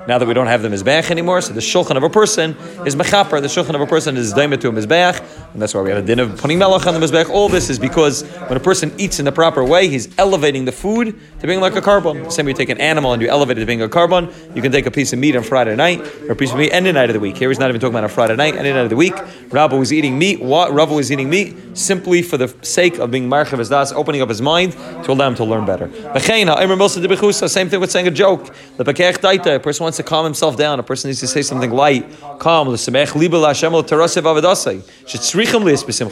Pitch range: 125-175 Hz